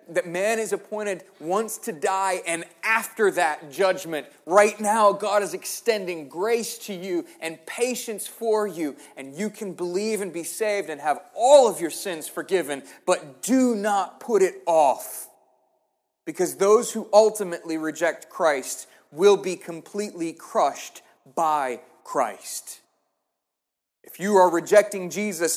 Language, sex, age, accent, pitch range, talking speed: English, male, 30-49, American, 165-210 Hz, 140 wpm